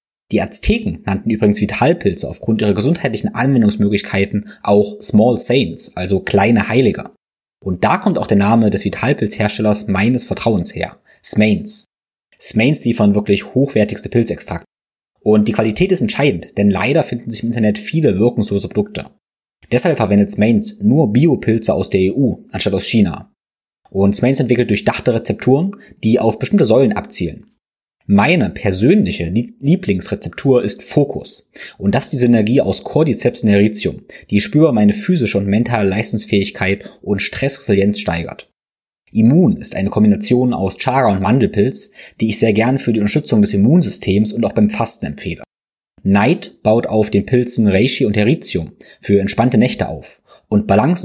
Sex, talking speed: male, 150 wpm